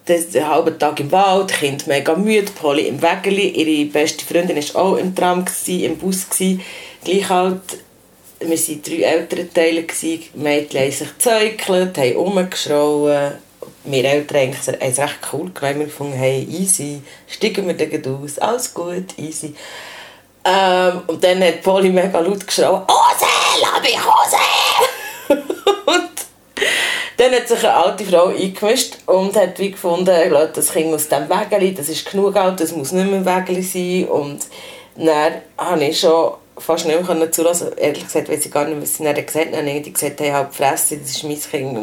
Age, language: 40-59, German